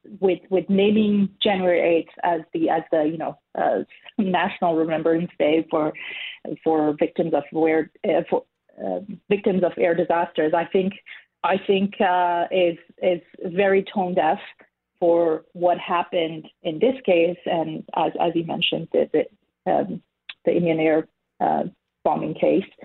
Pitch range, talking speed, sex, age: 165-195 Hz, 150 wpm, female, 30-49